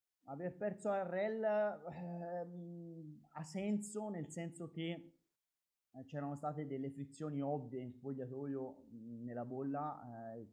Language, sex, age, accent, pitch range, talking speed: Italian, male, 20-39, native, 130-155 Hz, 120 wpm